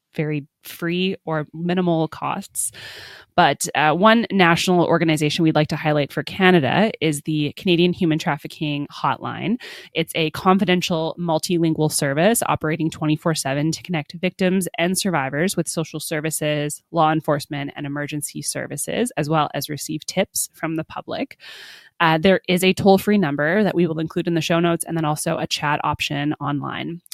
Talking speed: 160 wpm